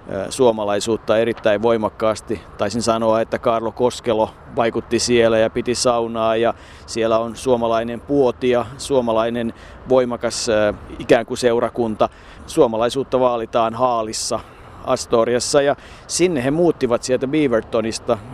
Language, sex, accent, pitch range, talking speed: Finnish, male, native, 115-130 Hz, 110 wpm